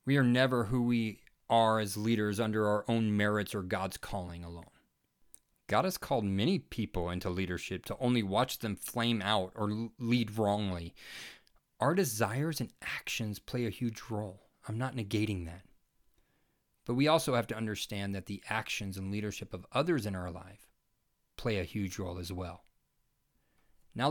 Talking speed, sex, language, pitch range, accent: 165 wpm, male, English, 100-125 Hz, American